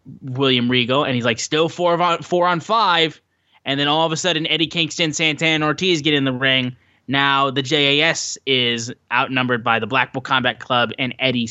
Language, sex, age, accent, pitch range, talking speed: English, male, 10-29, American, 115-140 Hz, 205 wpm